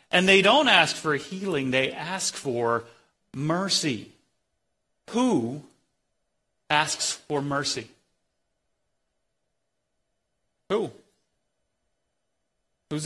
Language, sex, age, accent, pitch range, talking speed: English, male, 40-59, American, 125-190 Hz, 75 wpm